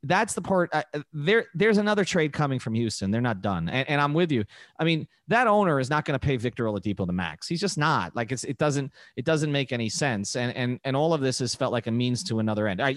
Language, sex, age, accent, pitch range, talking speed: English, male, 30-49, American, 120-160 Hz, 280 wpm